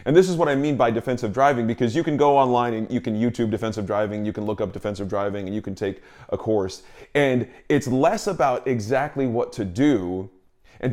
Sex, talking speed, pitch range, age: male, 225 wpm, 110-140 Hz, 30-49